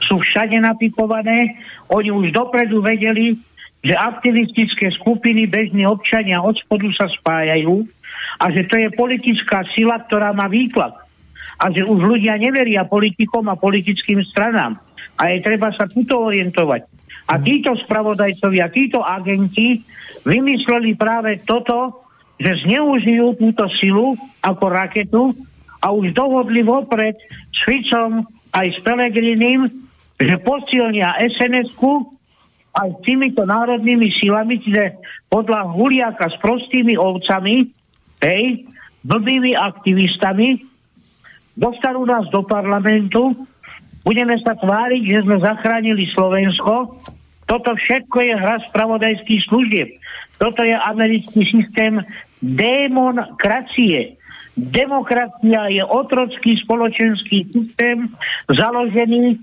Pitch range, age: 205-240 Hz, 60-79